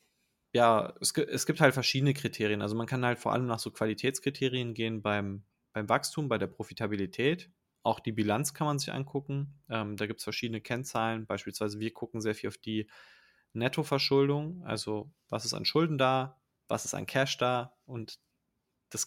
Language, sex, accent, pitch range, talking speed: German, male, German, 110-135 Hz, 175 wpm